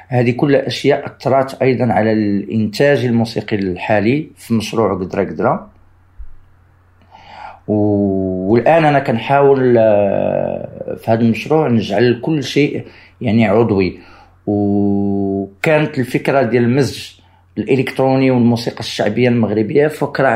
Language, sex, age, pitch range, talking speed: Arabic, male, 50-69, 100-130 Hz, 95 wpm